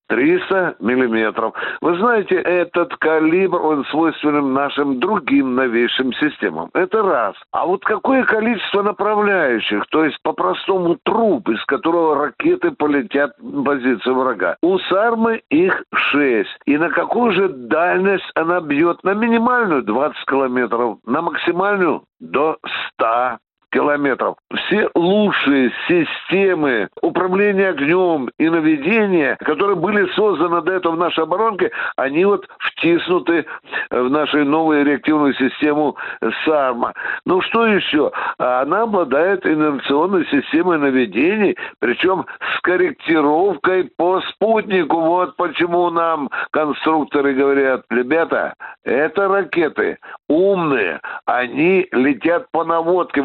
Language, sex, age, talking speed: Russian, male, 60-79, 115 wpm